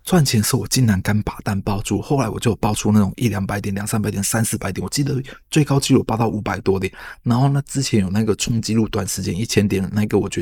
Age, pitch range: 20-39, 105-130 Hz